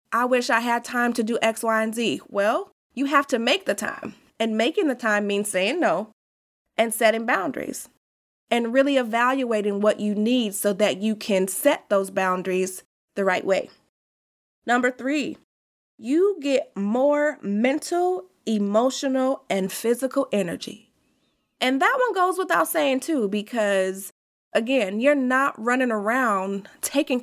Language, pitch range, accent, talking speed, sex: English, 200-275 Hz, American, 150 wpm, female